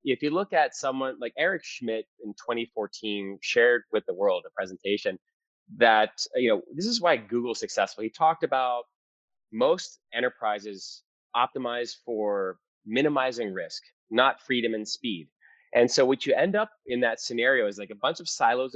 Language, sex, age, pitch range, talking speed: English, male, 30-49, 110-170 Hz, 170 wpm